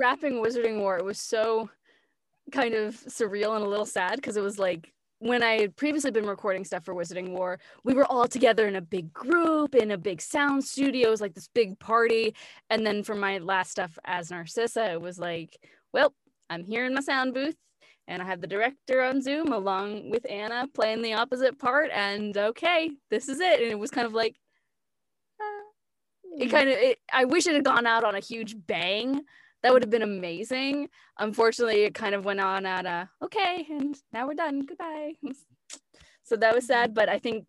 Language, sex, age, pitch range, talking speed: English, female, 20-39, 195-260 Hz, 210 wpm